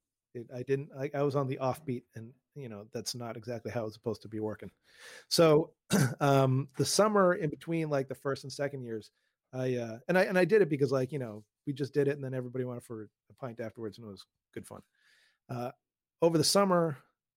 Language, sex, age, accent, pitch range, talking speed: English, male, 30-49, American, 120-145 Hz, 230 wpm